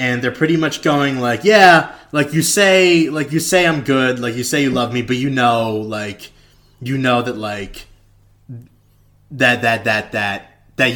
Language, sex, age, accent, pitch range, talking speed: English, male, 20-39, American, 115-155 Hz, 185 wpm